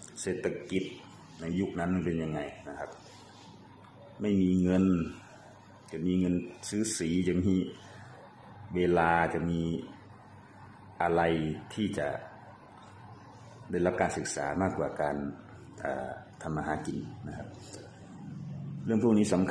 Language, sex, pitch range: Thai, male, 80-100 Hz